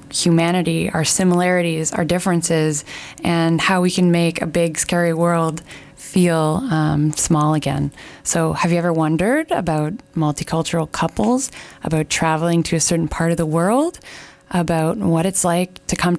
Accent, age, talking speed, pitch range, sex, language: American, 20-39, 150 wpm, 155-175 Hz, female, English